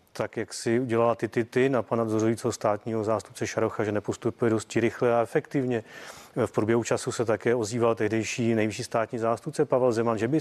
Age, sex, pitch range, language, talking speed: 30-49, male, 115-135 Hz, Czech, 190 wpm